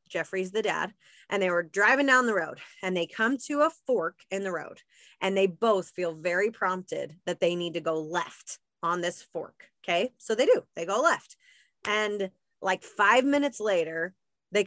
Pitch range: 180-255 Hz